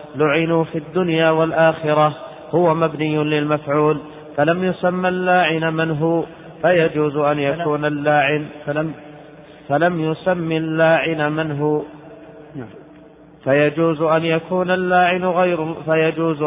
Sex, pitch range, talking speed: male, 150-160 Hz, 85 wpm